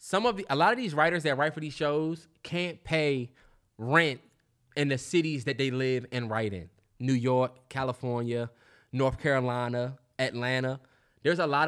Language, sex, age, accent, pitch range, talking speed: English, male, 20-39, American, 120-160 Hz, 170 wpm